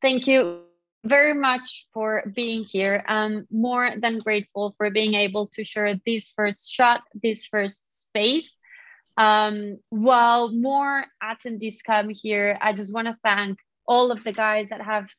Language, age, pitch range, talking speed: English, 20-39, 205-240 Hz, 155 wpm